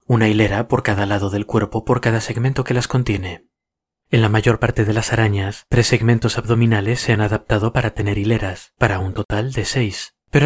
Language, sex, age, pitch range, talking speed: Spanish, male, 30-49, 105-125 Hz, 200 wpm